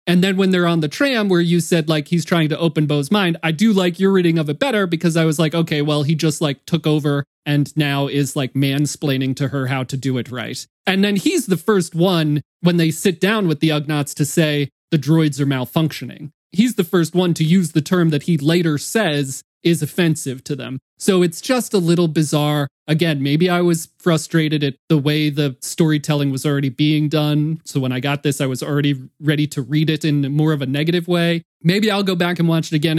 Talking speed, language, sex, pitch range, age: 235 wpm, English, male, 150-180 Hz, 30-49